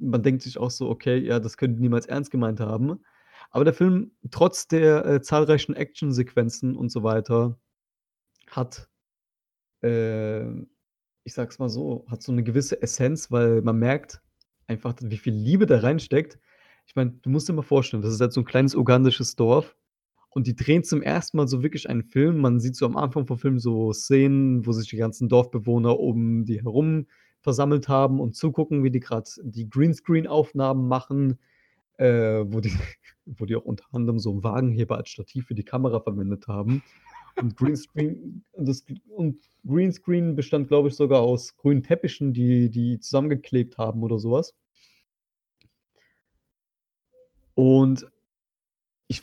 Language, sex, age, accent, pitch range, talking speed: German, male, 30-49, German, 115-145 Hz, 160 wpm